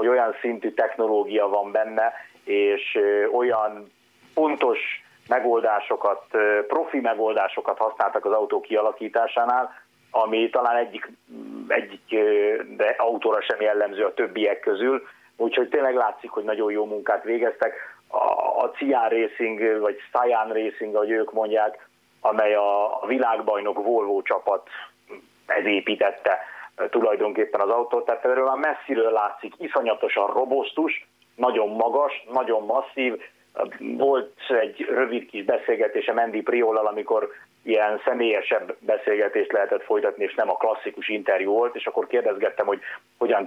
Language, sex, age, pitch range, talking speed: Hungarian, male, 30-49, 105-170 Hz, 125 wpm